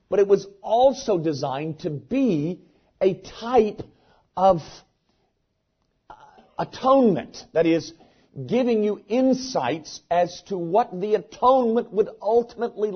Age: 50-69